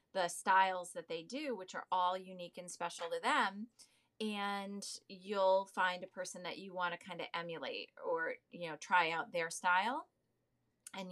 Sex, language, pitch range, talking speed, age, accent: female, English, 185-250 Hz, 180 wpm, 30-49, American